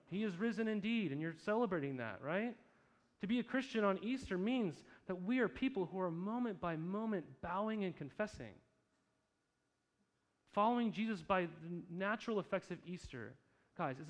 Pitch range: 145-200 Hz